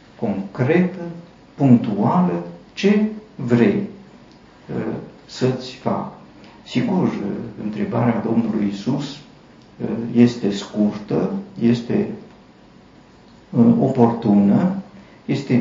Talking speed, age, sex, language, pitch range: 60 wpm, 50-69, male, Romanian, 115-165 Hz